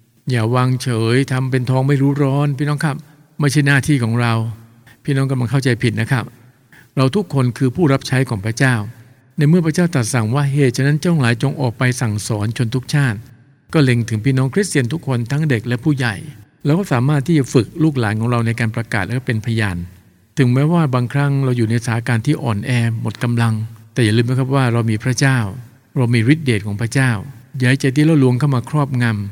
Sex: male